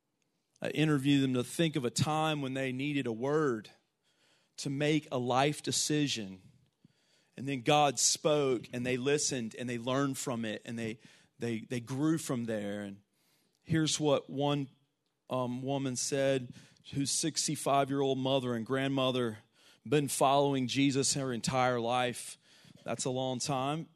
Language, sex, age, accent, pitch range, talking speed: English, male, 40-59, American, 130-175 Hz, 150 wpm